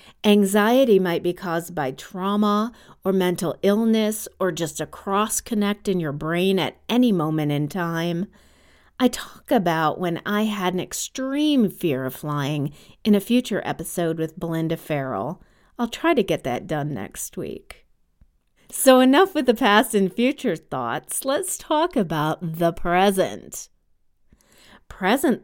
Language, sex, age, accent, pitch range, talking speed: English, female, 40-59, American, 170-210 Hz, 145 wpm